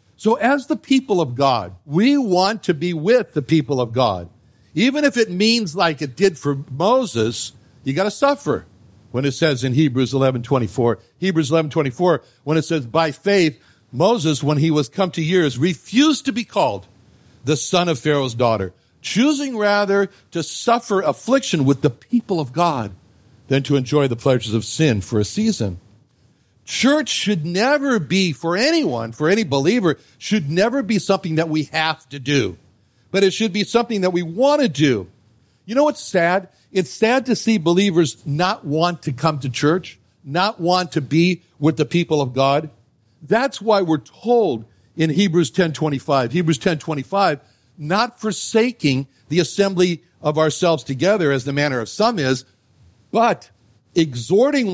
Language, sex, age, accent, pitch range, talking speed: English, male, 60-79, American, 130-195 Hz, 170 wpm